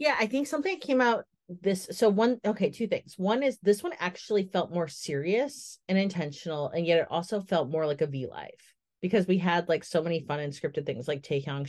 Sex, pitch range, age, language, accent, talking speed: female, 160-200 Hz, 30-49, English, American, 225 wpm